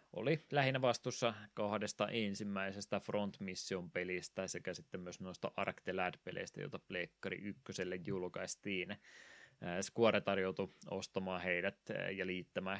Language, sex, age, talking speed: Finnish, male, 20-39, 115 wpm